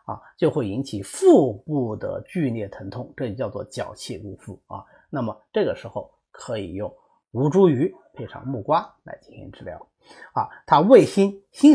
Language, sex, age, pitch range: Chinese, male, 30-49, 125-200 Hz